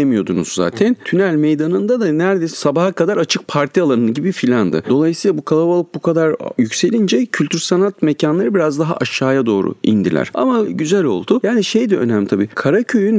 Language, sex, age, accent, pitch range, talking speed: Turkish, male, 40-59, native, 115-165 Hz, 165 wpm